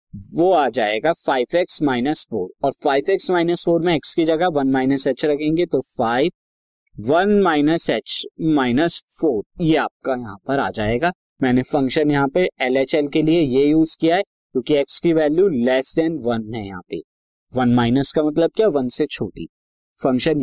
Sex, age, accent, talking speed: male, 20-39, native, 180 wpm